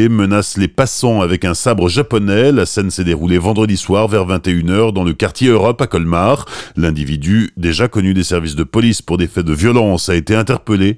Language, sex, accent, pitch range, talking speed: French, male, French, 90-120 Hz, 195 wpm